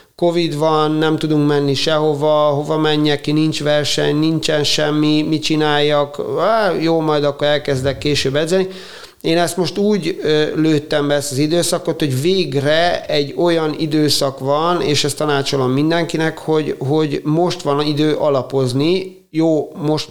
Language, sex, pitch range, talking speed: Hungarian, male, 145-165 Hz, 145 wpm